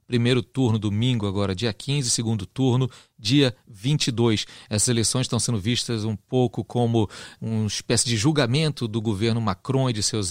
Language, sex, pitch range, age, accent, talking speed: Portuguese, male, 110-130 Hz, 40-59, Brazilian, 165 wpm